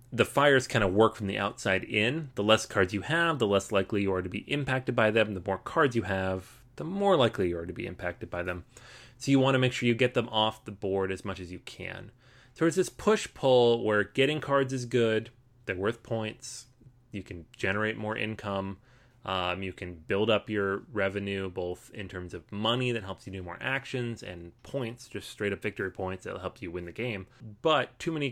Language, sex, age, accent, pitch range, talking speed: English, male, 30-49, American, 100-125 Hz, 230 wpm